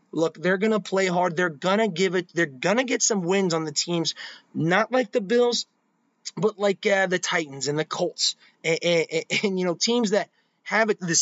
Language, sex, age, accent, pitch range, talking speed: English, male, 30-49, American, 160-210 Hz, 210 wpm